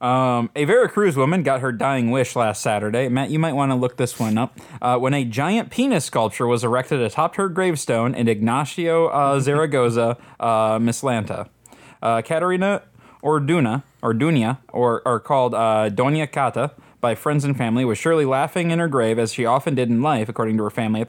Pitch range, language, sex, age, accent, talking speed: 115-150 Hz, English, male, 20-39, American, 195 wpm